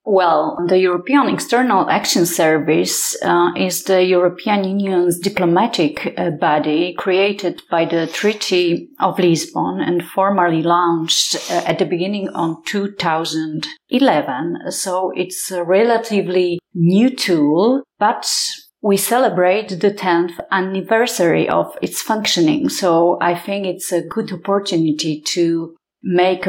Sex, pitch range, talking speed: female, 170-205 Hz, 120 wpm